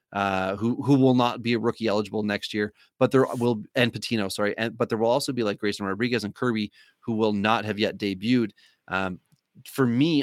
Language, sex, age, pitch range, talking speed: English, male, 30-49, 105-120 Hz, 215 wpm